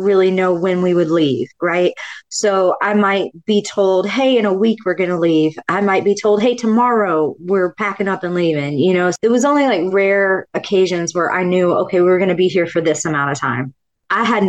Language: English